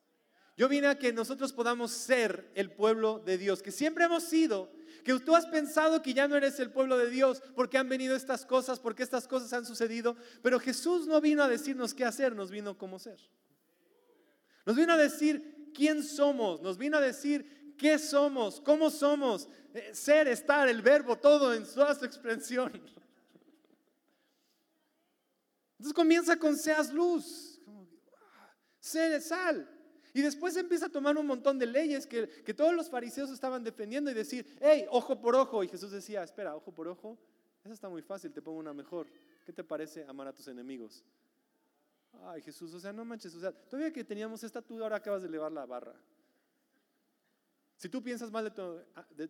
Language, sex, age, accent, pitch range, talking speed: Spanish, male, 40-59, Mexican, 215-295 Hz, 185 wpm